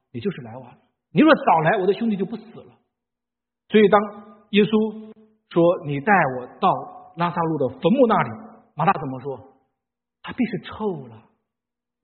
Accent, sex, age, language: native, male, 50-69, Chinese